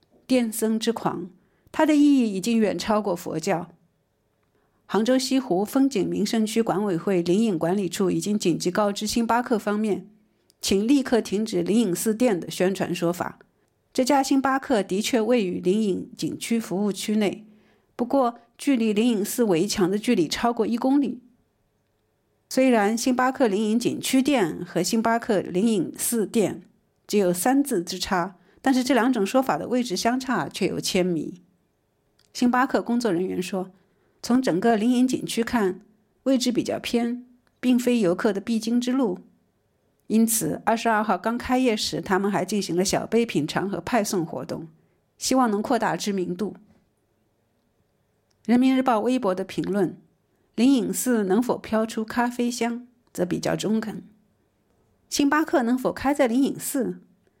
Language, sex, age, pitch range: German, female, 50-69, 185-245 Hz